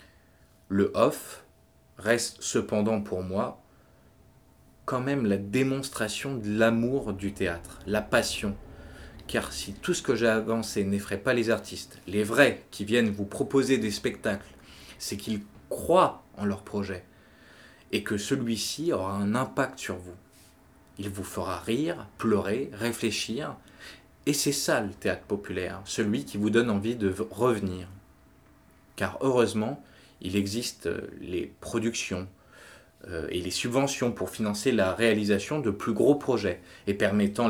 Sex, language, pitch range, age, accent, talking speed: male, French, 95-115 Hz, 20-39, French, 140 wpm